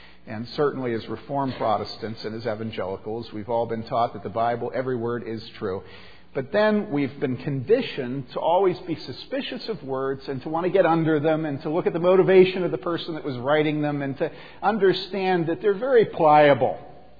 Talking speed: 200 wpm